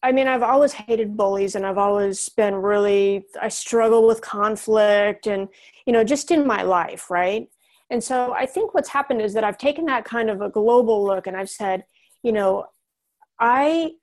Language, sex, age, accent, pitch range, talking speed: English, female, 40-59, American, 200-250 Hz, 195 wpm